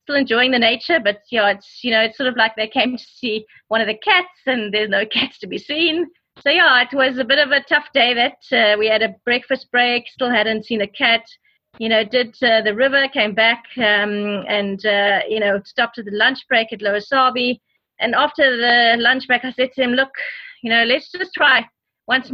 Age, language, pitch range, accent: 30-49, English, 215-260 Hz, South African